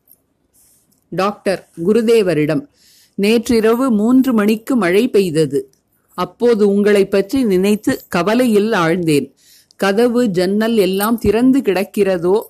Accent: native